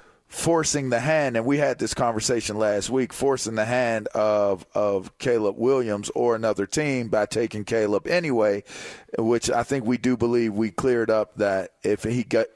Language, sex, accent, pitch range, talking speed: English, male, American, 105-130 Hz, 175 wpm